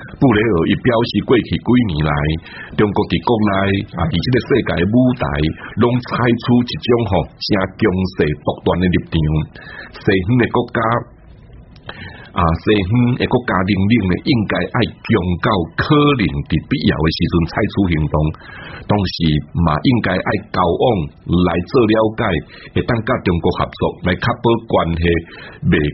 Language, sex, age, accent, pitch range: Chinese, male, 60-79, Malaysian, 85-120 Hz